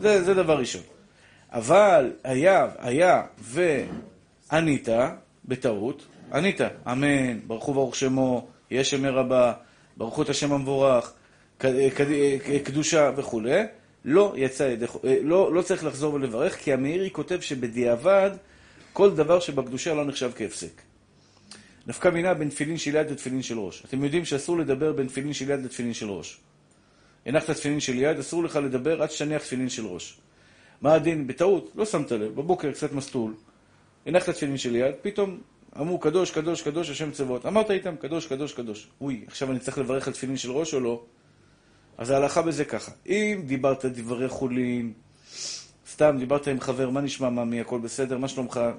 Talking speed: 160 wpm